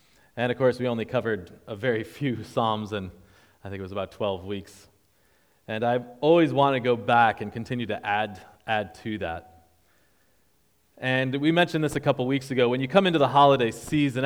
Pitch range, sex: 100-120 Hz, male